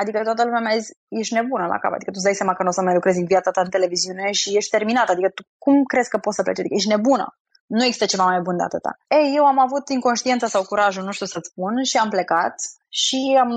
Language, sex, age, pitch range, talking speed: Romanian, female, 20-39, 190-245 Hz, 275 wpm